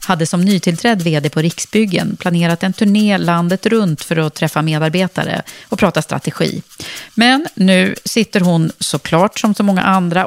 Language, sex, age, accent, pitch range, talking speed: Swedish, female, 40-59, native, 160-210 Hz, 160 wpm